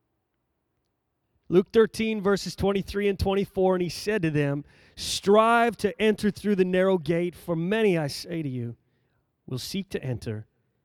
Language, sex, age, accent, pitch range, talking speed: English, male, 30-49, American, 150-220 Hz, 155 wpm